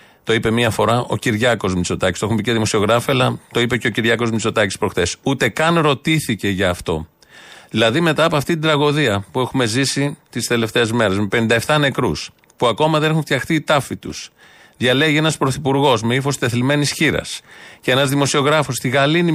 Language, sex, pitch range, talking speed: Greek, male, 115-150 Hz, 185 wpm